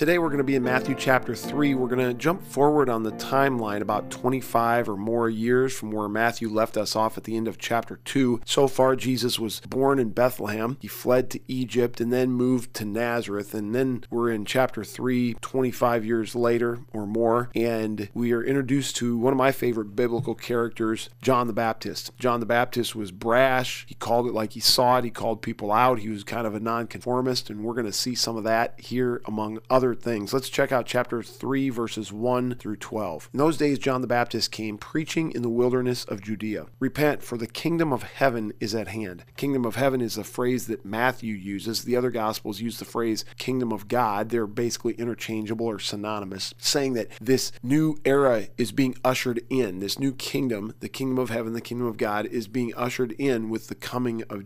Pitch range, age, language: 110-130 Hz, 40-59, English